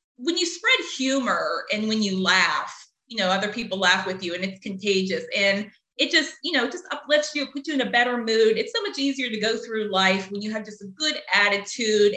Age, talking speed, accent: 30-49, 230 wpm, American